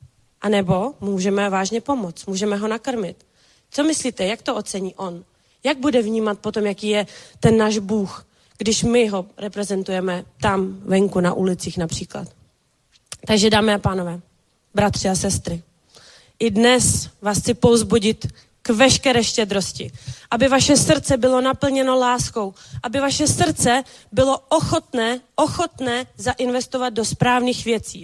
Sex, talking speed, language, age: female, 135 wpm, Czech, 30-49